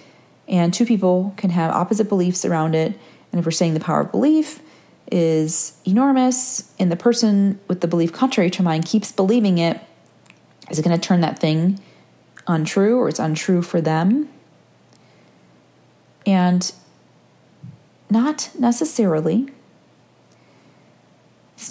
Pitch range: 170-225 Hz